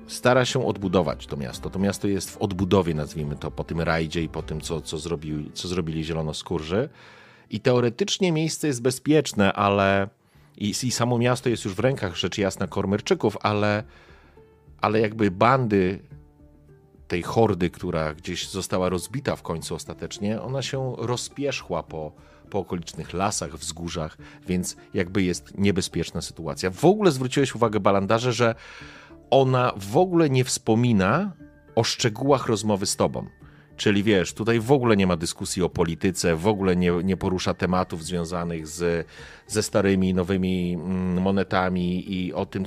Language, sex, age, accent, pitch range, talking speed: Polish, male, 40-59, native, 85-115 Hz, 155 wpm